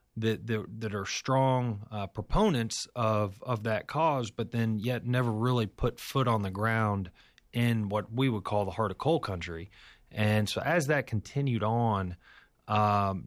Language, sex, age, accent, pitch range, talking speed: English, male, 30-49, American, 100-120 Hz, 165 wpm